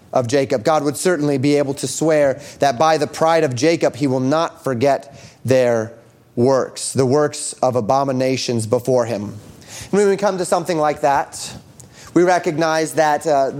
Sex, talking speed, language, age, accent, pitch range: male, 170 wpm, English, 30-49, American, 130-160 Hz